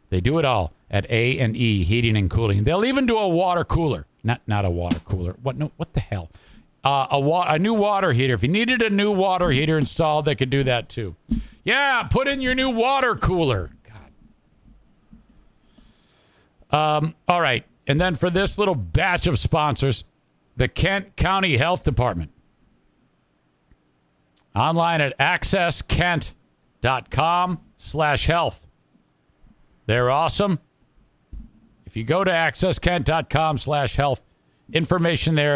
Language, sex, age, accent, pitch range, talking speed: English, male, 50-69, American, 110-165 Hz, 145 wpm